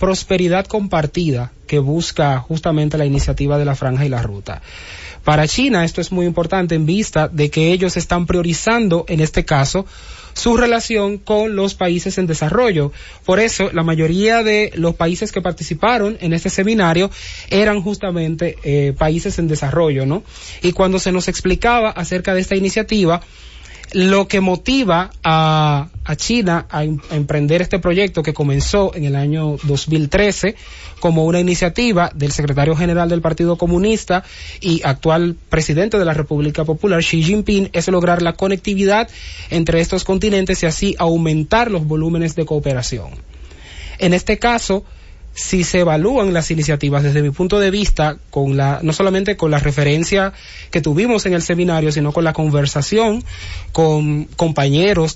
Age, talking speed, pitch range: 30-49, 155 wpm, 150-195 Hz